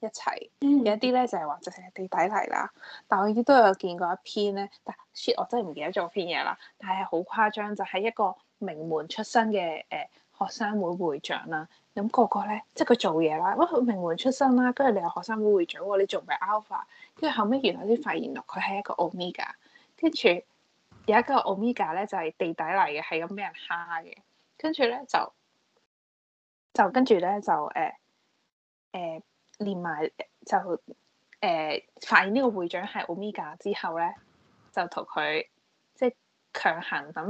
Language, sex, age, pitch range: Chinese, female, 10-29, 175-235 Hz